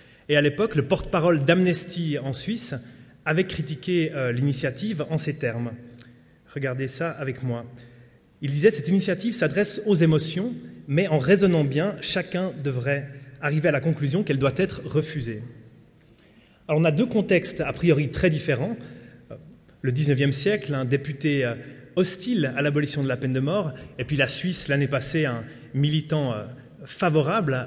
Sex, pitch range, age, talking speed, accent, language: male, 130-175 Hz, 30-49, 155 wpm, French, French